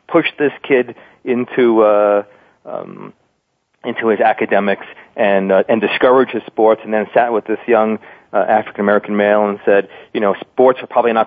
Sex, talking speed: male, 175 wpm